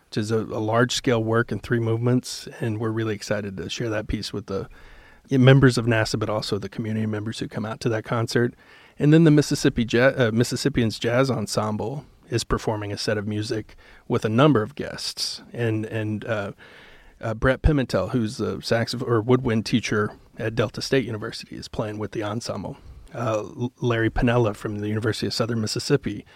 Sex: male